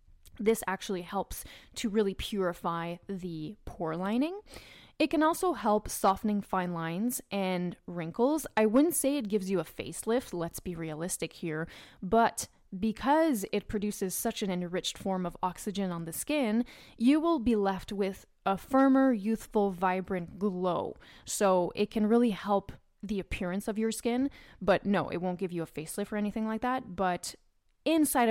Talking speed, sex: 165 wpm, female